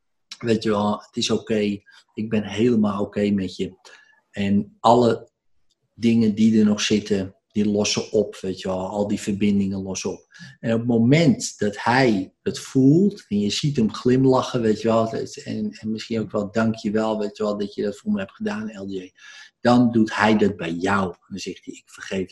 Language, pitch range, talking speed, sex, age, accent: Dutch, 95-115 Hz, 205 wpm, male, 50-69, Dutch